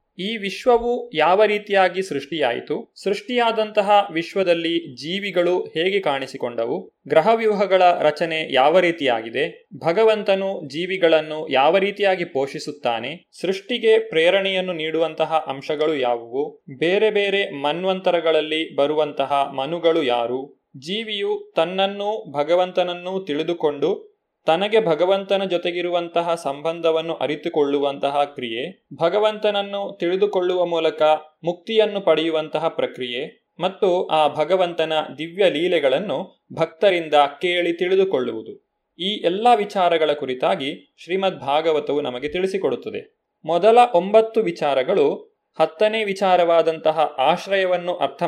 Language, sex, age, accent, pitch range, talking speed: Kannada, male, 20-39, native, 155-200 Hz, 85 wpm